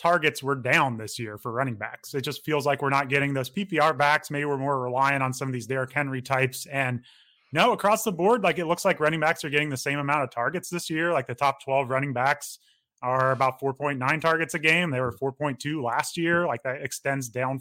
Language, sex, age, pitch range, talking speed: English, male, 30-49, 130-155 Hz, 240 wpm